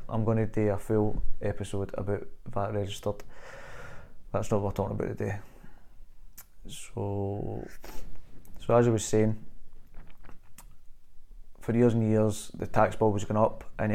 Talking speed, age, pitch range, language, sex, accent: 145 wpm, 20-39, 100-115 Hz, English, male, British